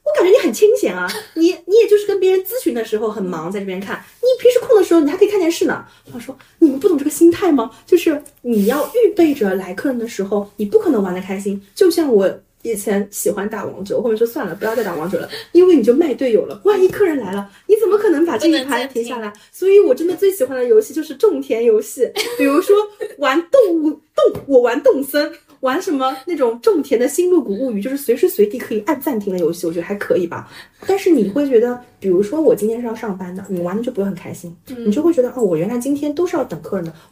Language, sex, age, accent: Chinese, female, 30-49, native